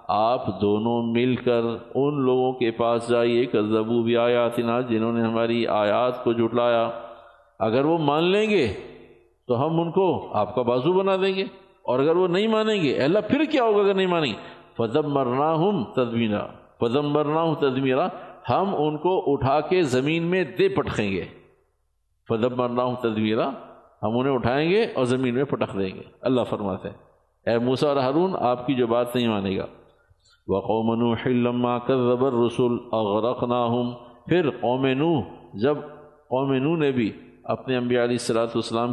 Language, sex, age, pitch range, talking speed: Urdu, male, 50-69, 120-150 Hz, 175 wpm